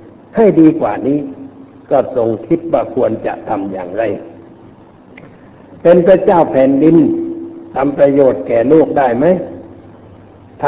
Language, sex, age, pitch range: Thai, male, 60-79, 120-175 Hz